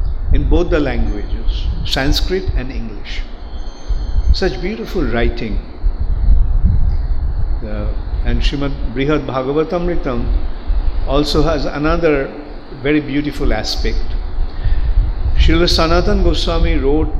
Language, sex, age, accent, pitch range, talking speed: English, male, 50-69, Indian, 75-110 Hz, 85 wpm